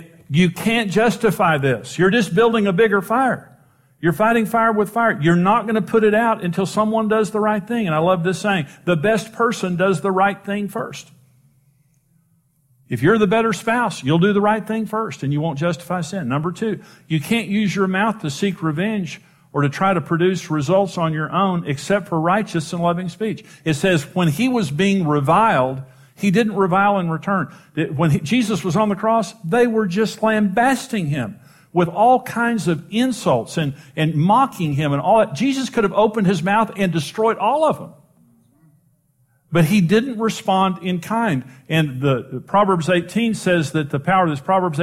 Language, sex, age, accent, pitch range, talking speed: English, male, 50-69, American, 155-215 Hz, 195 wpm